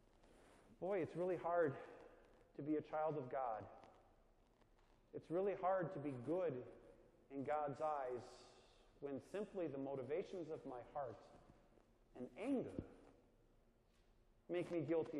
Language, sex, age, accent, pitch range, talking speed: English, male, 40-59, American, 145-215 Hz, 120 wpm